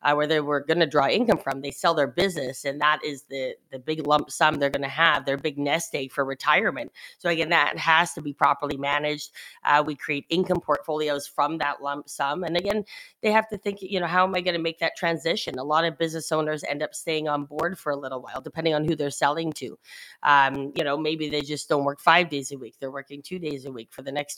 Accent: American